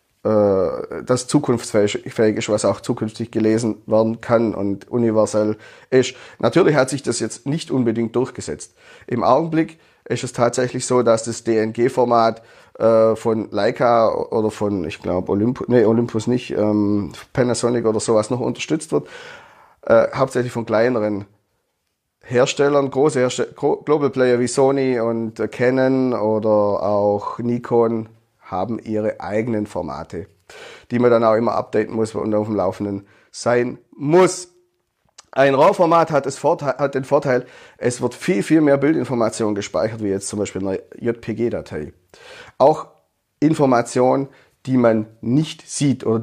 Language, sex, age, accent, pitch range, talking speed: German, male, 30-49, German, 110-130 Hz, 140 wpm